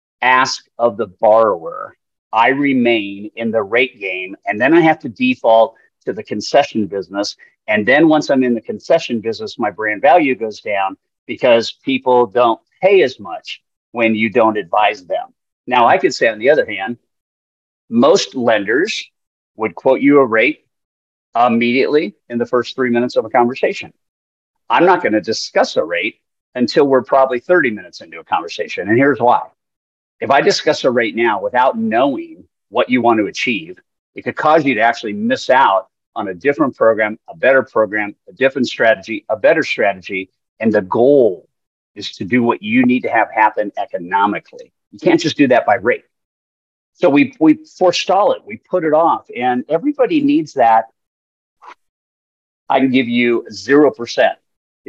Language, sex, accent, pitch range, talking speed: English, male, American, 110-155 Hz, 175 wpm